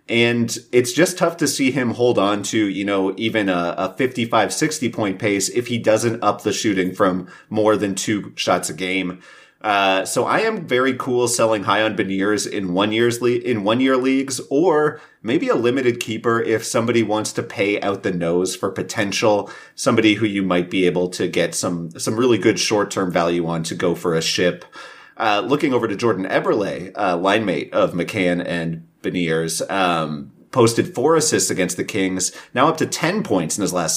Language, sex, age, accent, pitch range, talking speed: English, male, 30-49, American, 95-120 Hz, 200 wpm